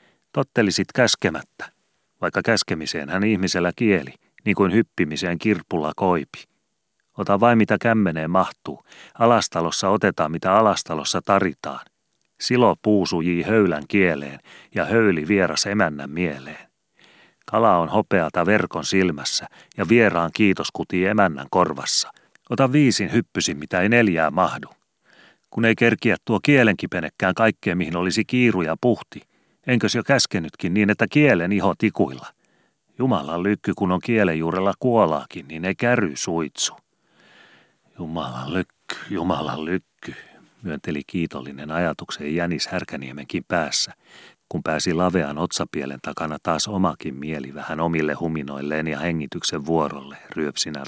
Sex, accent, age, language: male, native, 30-49, Finnish